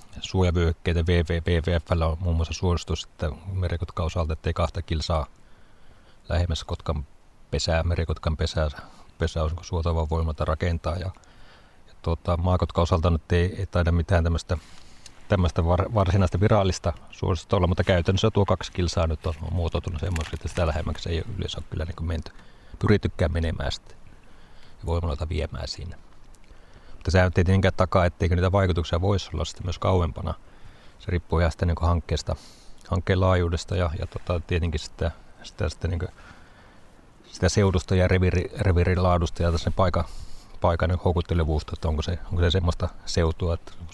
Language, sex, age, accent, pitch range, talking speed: Finnish, male, 30-49, native, 80-95 Hz, 140 wpm